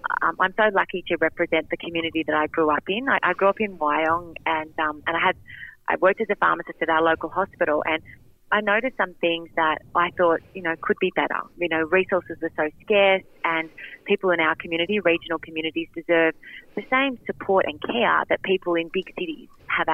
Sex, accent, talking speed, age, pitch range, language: female, Australian, 215 wpm, 30-49, 155-190 Hz, English